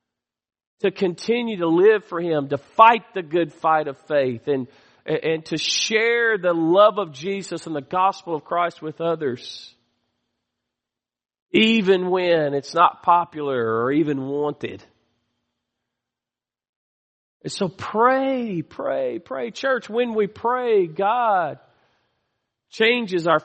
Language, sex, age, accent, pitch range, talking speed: English, male, 40-59, American, 155-205 Hz, 125 wpm